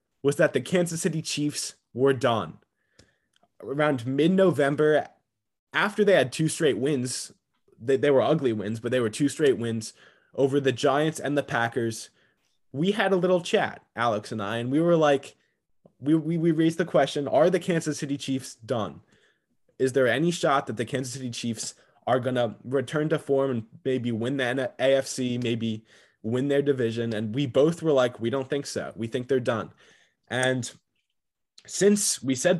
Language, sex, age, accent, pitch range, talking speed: English, male, 20-39, American, 120-150 Hz, 180 wpm